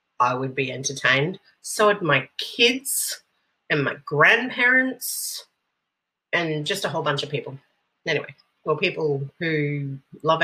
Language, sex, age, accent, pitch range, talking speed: English, female, 30-49, Australian, 175-245 Hz, 130 wpm